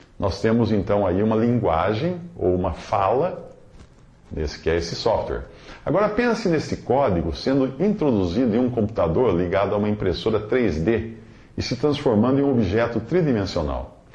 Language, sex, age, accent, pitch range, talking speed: English, male, 50-69, Brazilian, 85-125 Hz, 145 wpm